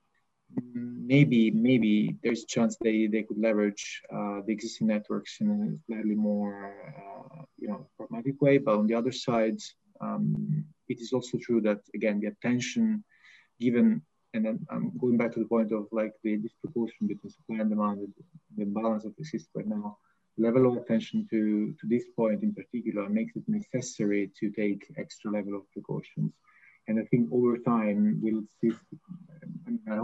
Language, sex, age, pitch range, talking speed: English, male, 20-39, 105-135 Hz, 175 wpm